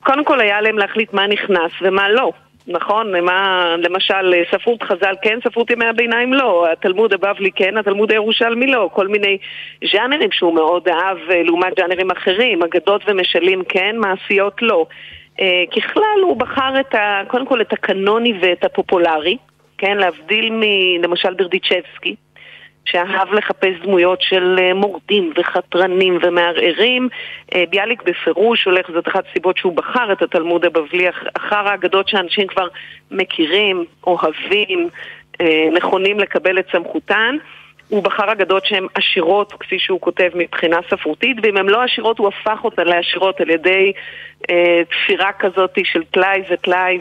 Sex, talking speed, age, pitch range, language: female, 135 wpm, 40-59, 180-220 Hz, Hebrew